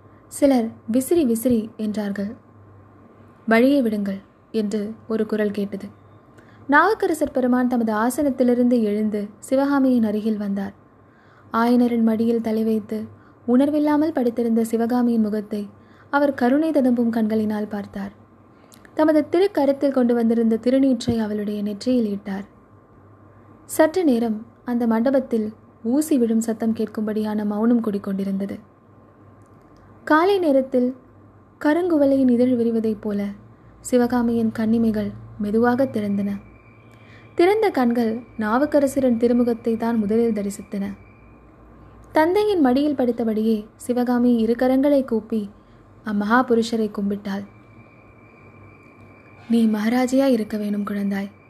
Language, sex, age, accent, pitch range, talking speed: Tamil, female, 20-39, native, 205-250 Hz, 90 wpm